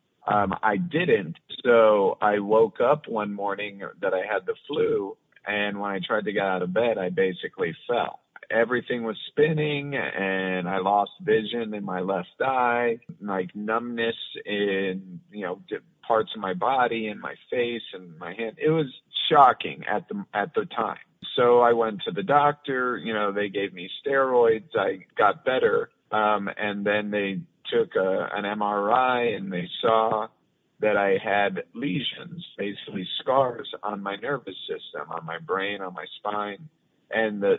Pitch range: 100-150 Hz